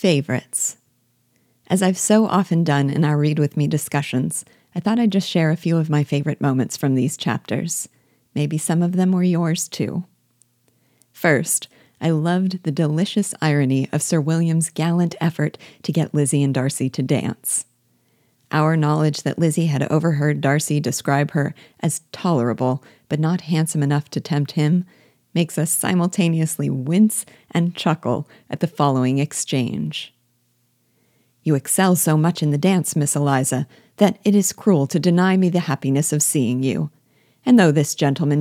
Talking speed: 160 wpm